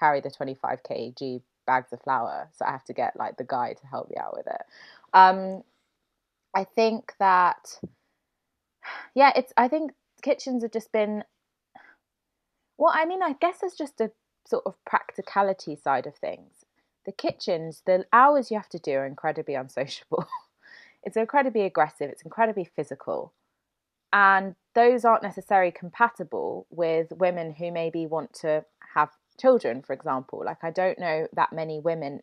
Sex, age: female, 20-39